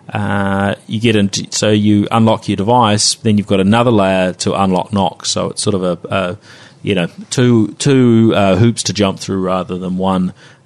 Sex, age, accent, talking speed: male, 30-49, Australian, 195 wpm